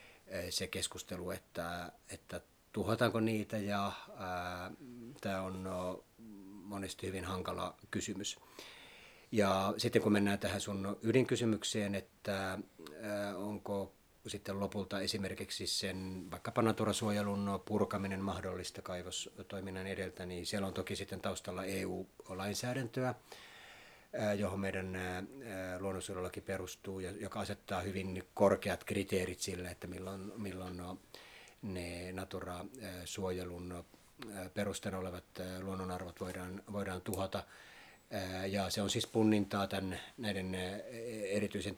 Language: Finnish